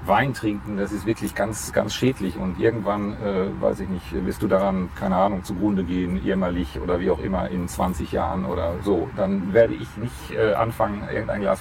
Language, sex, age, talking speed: German, male, 40-59, 200 wpm